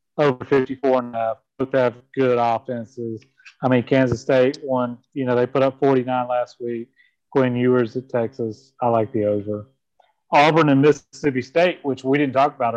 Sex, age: male, 30-49